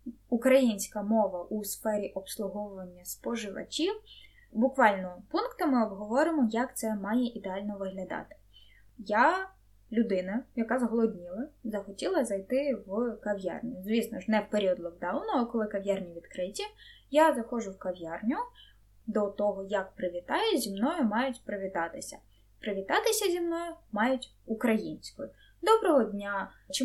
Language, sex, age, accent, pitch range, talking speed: Ukrainian, female, 10-29, native, 200-270 Hz, 115 wpm